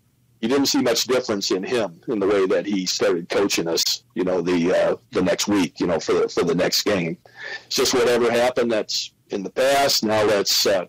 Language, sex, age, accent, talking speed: English, male, 50-69, American, 225 wpm